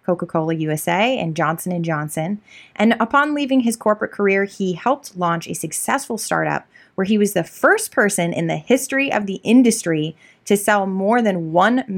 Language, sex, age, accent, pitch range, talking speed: English, female, 20-39, American, 175-245 Hz, 170 wpm